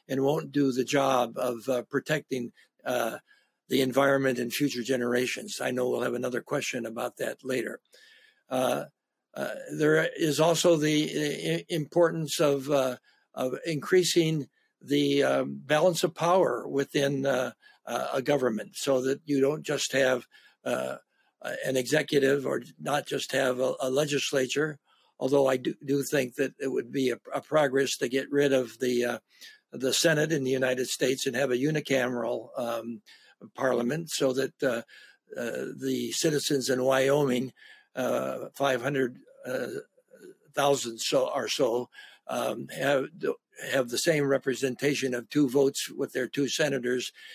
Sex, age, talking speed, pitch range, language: male, 60-79, 145 wpm, 130-160 Hz, English